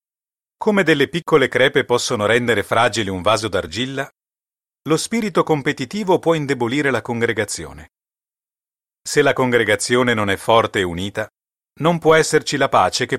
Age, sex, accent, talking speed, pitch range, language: 30-49, male, native, 140 wpm, 105-155 Hz, Italian